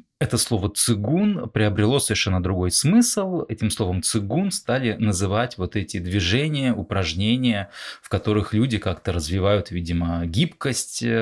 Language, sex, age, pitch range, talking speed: Russian, male, 20-39, 95-125 Hz, 125 wpm